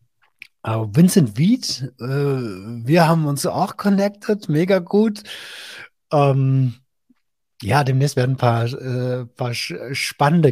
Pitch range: 120-170 Hz